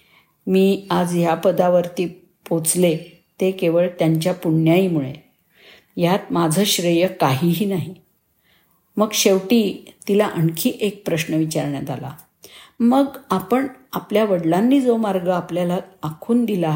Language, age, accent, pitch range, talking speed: Marathi, 50-69, native, 165-210 Hz, 110 wpm